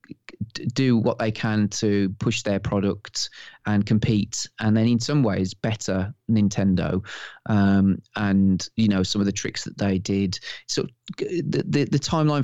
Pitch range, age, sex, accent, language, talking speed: 100-115 Hz, 20-39, male, British, English, 160 wpm